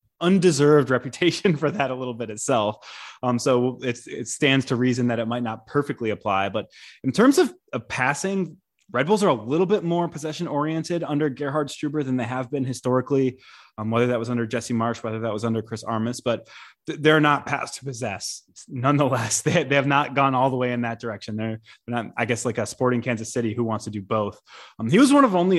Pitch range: 115-140 Hz